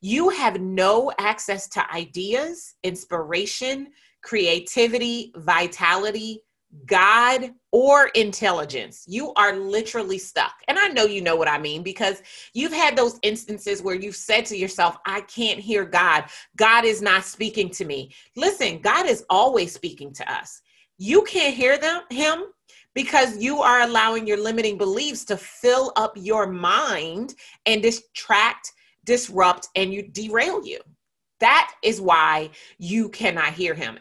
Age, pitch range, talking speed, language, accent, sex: 30-49, 175-240 Hz, 145 wpm, English, American, female